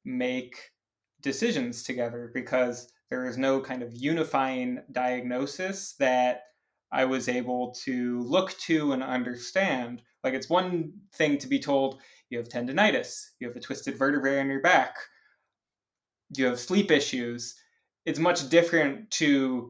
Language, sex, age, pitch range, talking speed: English, male, 20-39, 125-155 Hz, 140 wpm